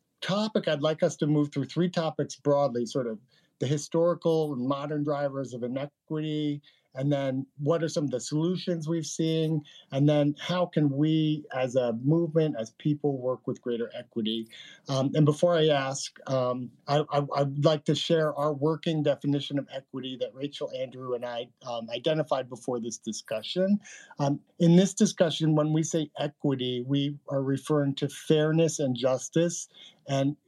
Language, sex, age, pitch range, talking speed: English, male, 50-69, 130-155 Hz, 165 wpm